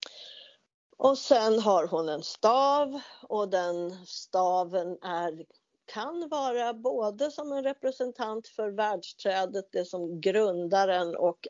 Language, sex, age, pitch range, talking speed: Swedish, female, 50-69, 175-265 Hz, 115 wpm